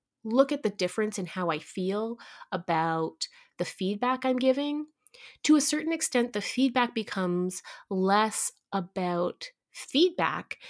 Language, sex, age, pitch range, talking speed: English, female, 30-49, 180-255 Hz, 130 wpm